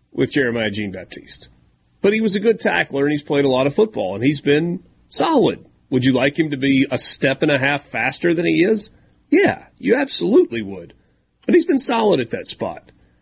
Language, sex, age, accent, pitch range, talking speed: English, male, 40-59, American, 120-165 Hz, 210 wpm